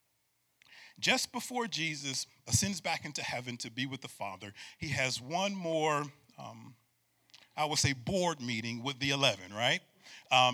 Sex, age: male, 40-59